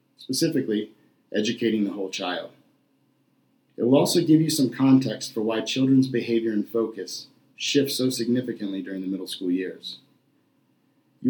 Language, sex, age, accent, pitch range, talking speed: English, male, 40-59, American, 110-130 Hz, 145 wpm